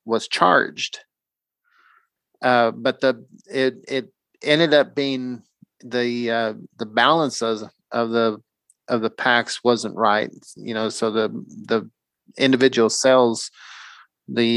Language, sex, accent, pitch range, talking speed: English, male, American, 110-135 Hz, 125 wpm